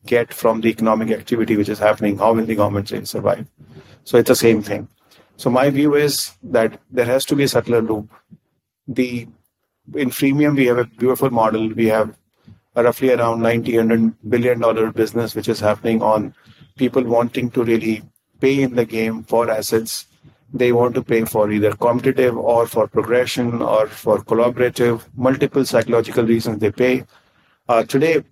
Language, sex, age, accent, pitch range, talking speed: English, male, 30-49, Indian, 110-130 Hz, 170 wpm